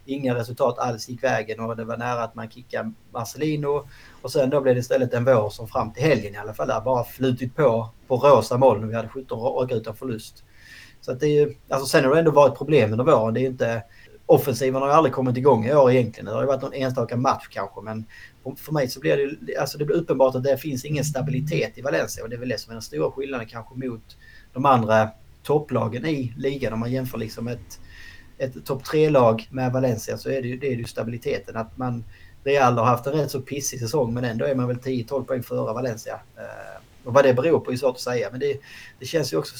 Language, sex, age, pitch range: Swedish, male, 30-49, 115-135 Hz